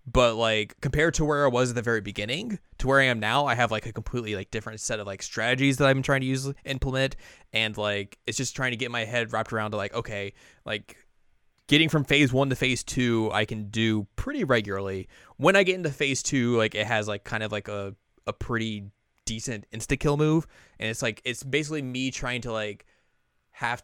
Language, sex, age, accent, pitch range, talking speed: English, male, 20-39, American, 105-130 Hz, 225 wpm